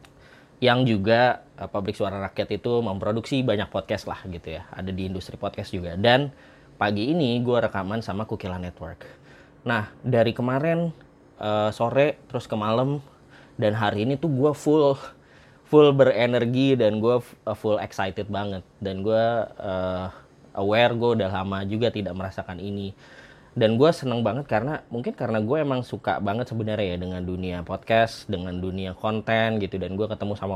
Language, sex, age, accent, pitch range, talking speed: Indonesian, male, 20-39, native, 95-120 Hz, 160 wpm